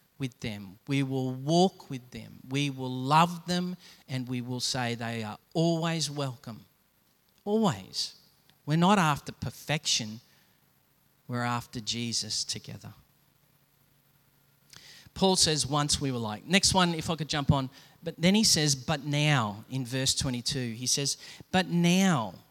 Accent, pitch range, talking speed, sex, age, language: Australian, 125-155 Hz, 145 wpm, male, 40-59, English